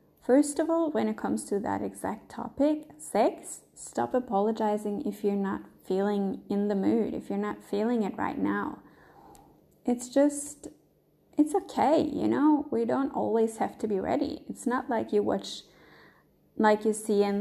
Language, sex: English, female